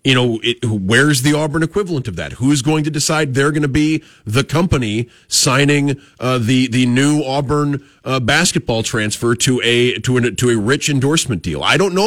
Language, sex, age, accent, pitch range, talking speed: English, male, 30-49, American, 110-150 Hz, 195 wpm